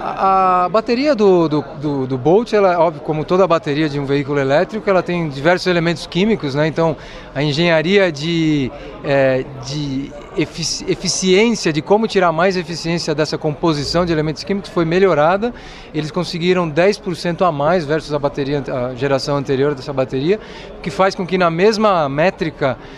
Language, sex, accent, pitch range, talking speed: Portuguese, male, Brazilian, 150-190 Hz, 165 wpm